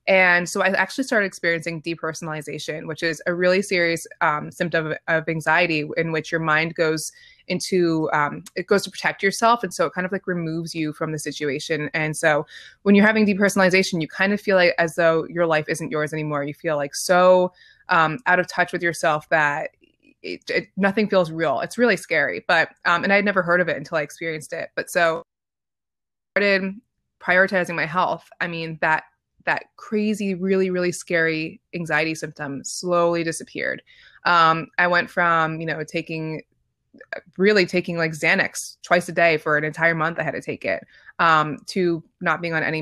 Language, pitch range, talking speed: English, 160-190 Hz, 195 wpm